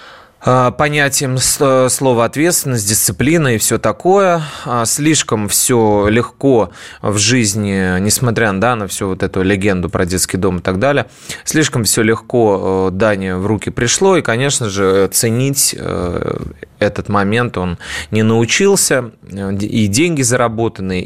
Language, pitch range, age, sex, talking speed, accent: Russian, 100-135 Hz, 20-39, male, 125 wpm, native